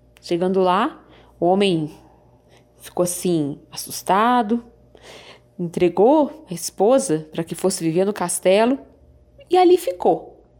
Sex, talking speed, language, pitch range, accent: female, 110 wpm, Portuguese, 195-305 Hz, Brazilian